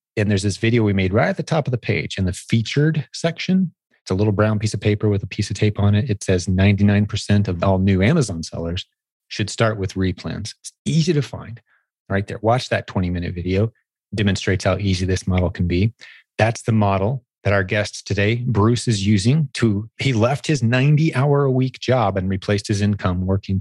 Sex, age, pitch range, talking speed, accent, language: male, 30-49, 95-120 Hz, 205 wpm, American, English